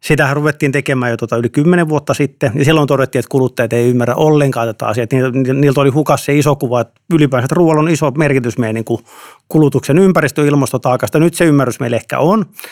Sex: male